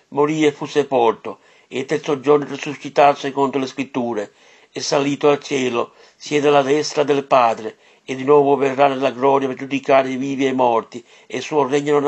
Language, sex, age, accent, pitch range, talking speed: Italian, male, 50-69, native, 135-150 Hz, 195 wpm